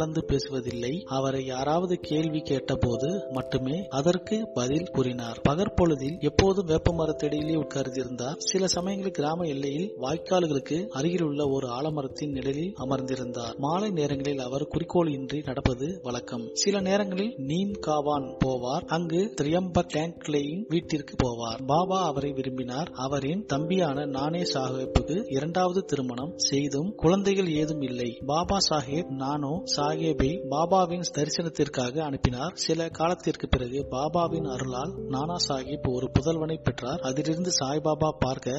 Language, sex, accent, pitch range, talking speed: Tamil, male, native, 135-170 Hz, 95 wpm